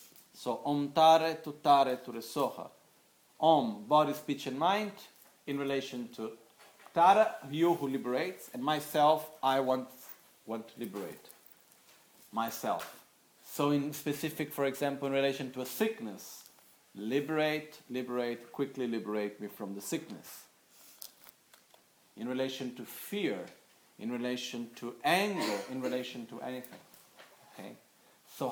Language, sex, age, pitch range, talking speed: Italian, male, 40-59, 120-150 Hz, 125 wpm